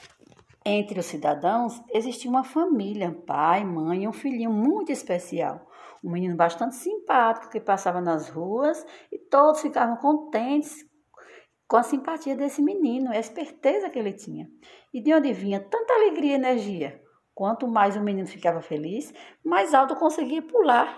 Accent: Brazilian